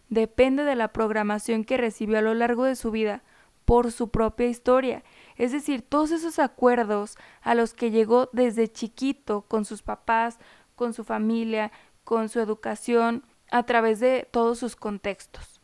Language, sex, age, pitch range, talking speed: Spanish, female, 20-39, 215-250 Hz, 160 wpm